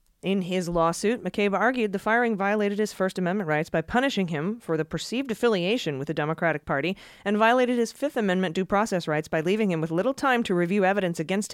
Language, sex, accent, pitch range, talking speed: English, female, American, 160-205 Hz, 215 wpm